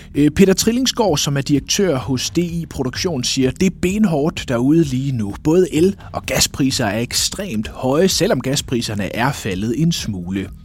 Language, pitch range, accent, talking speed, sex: Danish, 105-160 Hz, native, 165 wpm, male